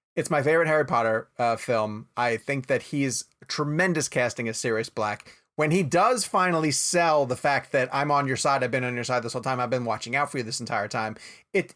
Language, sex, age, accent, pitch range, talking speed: English, male, 30-49, American, 120-170 Hz, 235 wpm